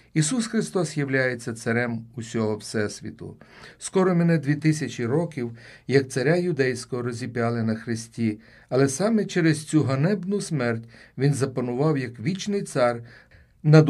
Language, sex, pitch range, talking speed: Ukrainian, male, 115-155 Hz, 125 wpm